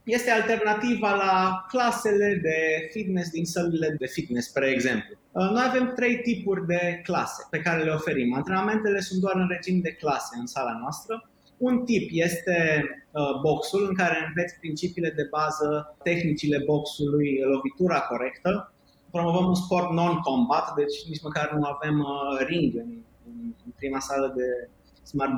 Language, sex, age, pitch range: Romanian, male, 20-39, 145-190 Hz